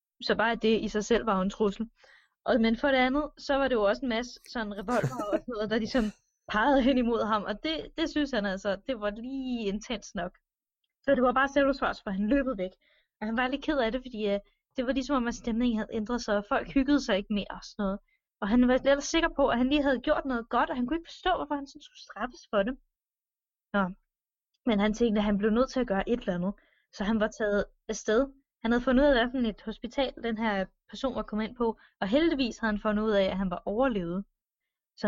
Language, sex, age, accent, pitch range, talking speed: Danish, female, 20-39, native, 200-260 Hz, 255 wpm